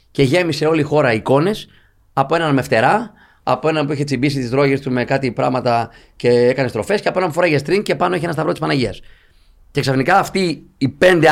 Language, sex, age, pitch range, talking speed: Greek, male, 30-49, 120-180 Hz, 225 wpm